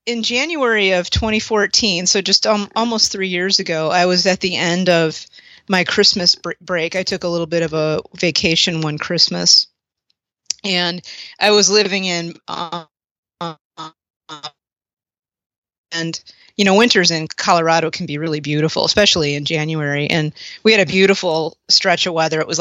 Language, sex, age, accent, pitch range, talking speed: English, female, 30-49, American, 160-190 Hz, 160 wpm